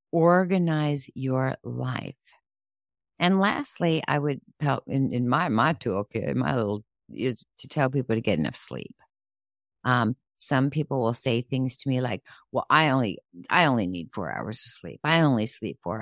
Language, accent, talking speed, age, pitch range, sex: English, American, 170 wpm, 50-69, 110-140 Hz, female